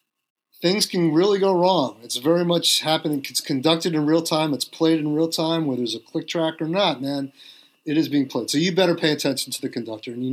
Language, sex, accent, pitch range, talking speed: English, male, American, 135-170 Hz, 240 wpm